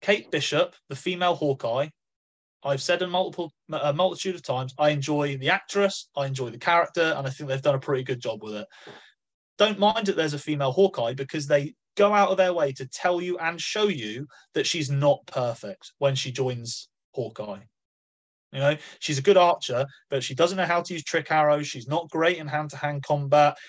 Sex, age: male, 30-49